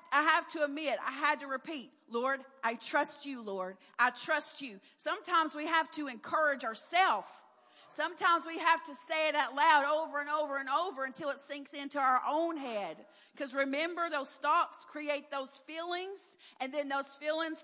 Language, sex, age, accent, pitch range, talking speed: English, female, 40-59, American, 245-315 Hz, 180 wpm